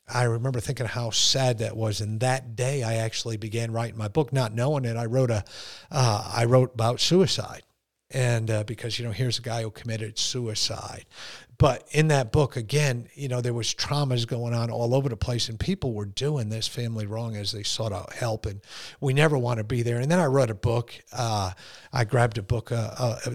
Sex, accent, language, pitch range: male, American, English, 110-130 Hz